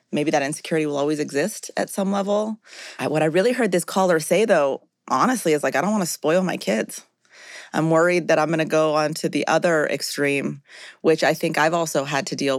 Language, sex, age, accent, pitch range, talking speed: English, female, 30-49, American, 160-195 Hz, 225 wpm